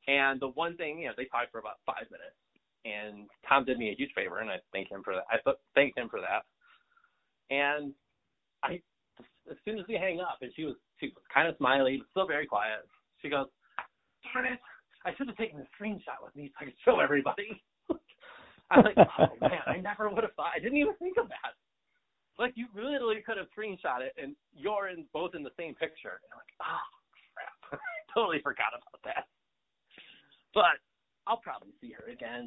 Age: 30-49